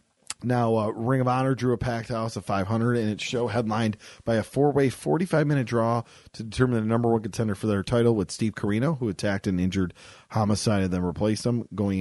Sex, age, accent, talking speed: male, 40-59, American, 210 wpm